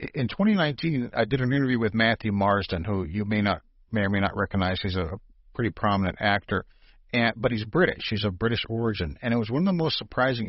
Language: English